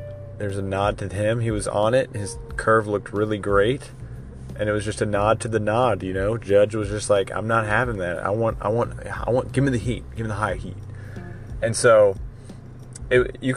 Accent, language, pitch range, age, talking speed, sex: American, English, 105-120 Hz, 30-49, 225 wpm, male